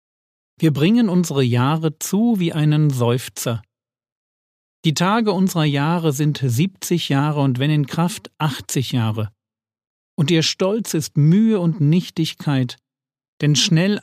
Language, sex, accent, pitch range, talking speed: German, male, German, 125-170 Hz, 130 wpm